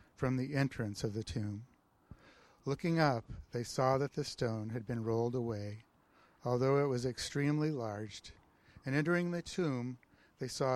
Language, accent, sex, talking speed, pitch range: English, American, male, 155 wpm, 110-140 Hz